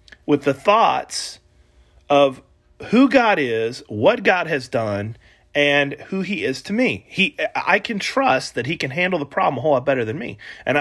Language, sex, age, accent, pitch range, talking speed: English, male, 30-49, American, 120-180 Hz, 190 wpm